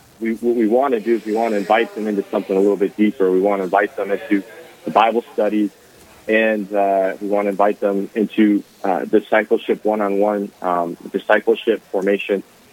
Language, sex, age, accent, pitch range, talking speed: English, male, 30-49, American, 100-115 Hz, 185 wpm